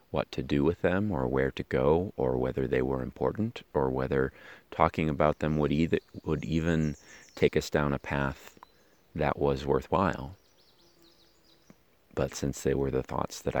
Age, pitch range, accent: 30-49, 65-80 Hz, American